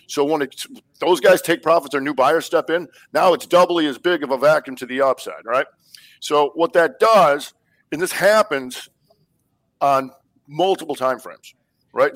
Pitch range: 135-175 Hz